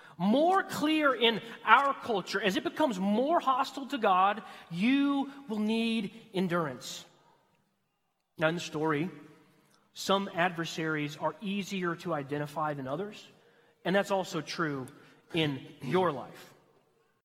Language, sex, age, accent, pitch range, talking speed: English, male, 30-49, American, 175-255 Hz, 120 wpm